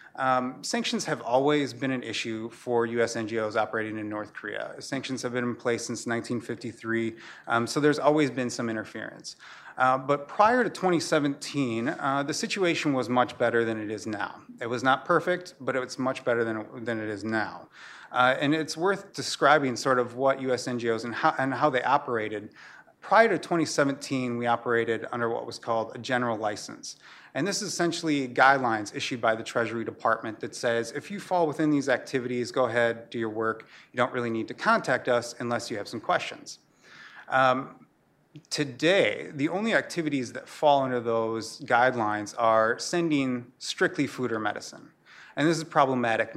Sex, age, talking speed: male, 30-49, 180 wpm